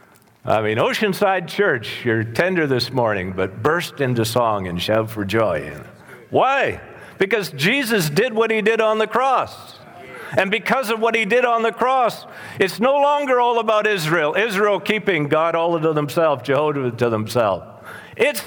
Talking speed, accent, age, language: 165 wpm, American, 50-69, English